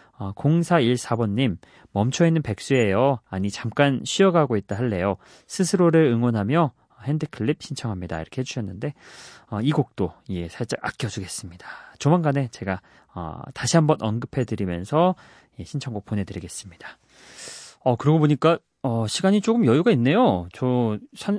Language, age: Korean, 30-49